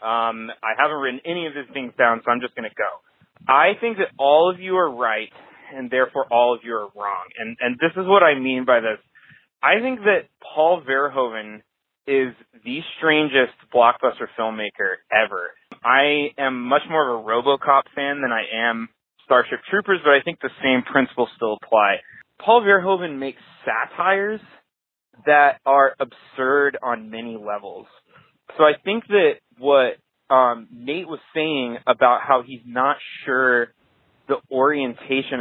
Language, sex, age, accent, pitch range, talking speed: English, male, 20-39, American, 120-160 Hz, 165 wpm